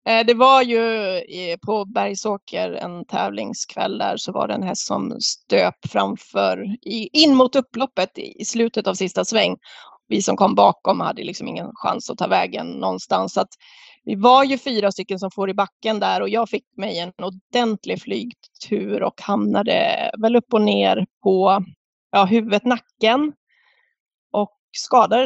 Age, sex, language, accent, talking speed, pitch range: 20-39, female, Swedish, native, 155 wpm, 195-245 Hz